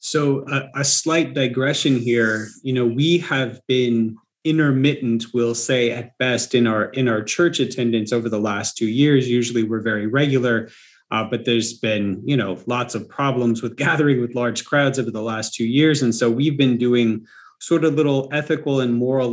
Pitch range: 115-150 Hz